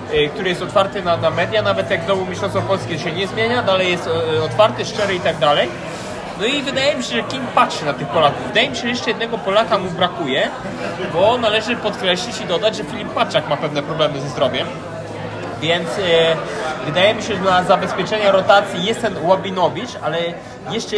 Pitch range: 175-220 Hz